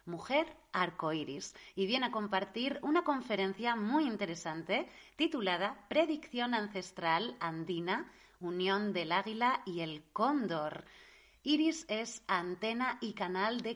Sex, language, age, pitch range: female, Spanish, 30-49, 185-245 Hz